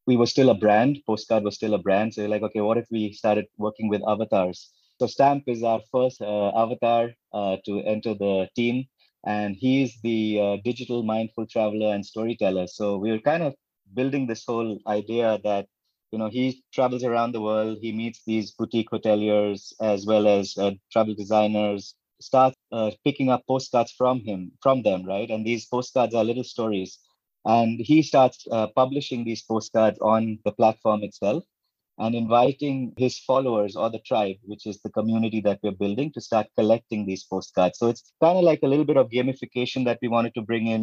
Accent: Indian